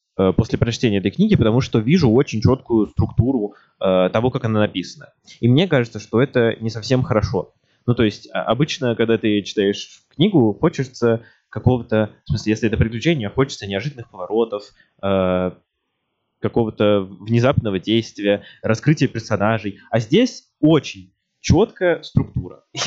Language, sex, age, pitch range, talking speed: Russian, male, 20-39, 110-145 Hz, 135 wpm